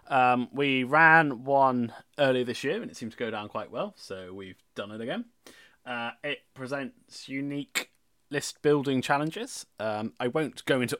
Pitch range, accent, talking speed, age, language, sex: 120-165 Hz, British, 175 wpm, 20-39, English, male